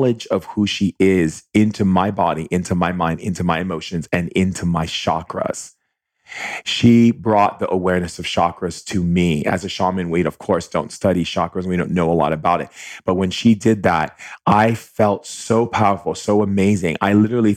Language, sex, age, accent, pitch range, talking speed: English, male, 30-49, American, 85-100 Hz, 185 wpm